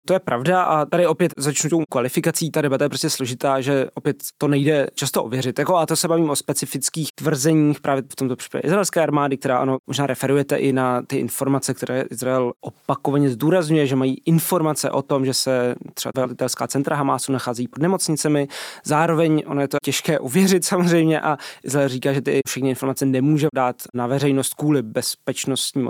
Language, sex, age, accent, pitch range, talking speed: Czech, male, 20-39, native, 130-150 Hz, 185 wpm